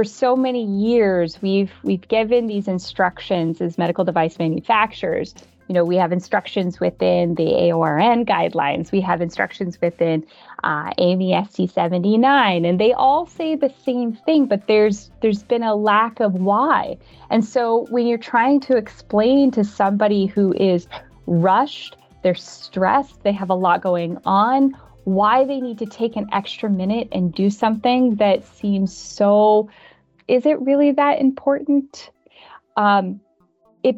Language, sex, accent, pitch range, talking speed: English, female, American, 185-240 Hz, 150 wpm